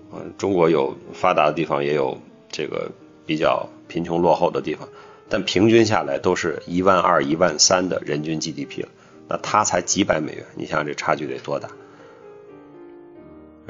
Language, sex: Chinese, male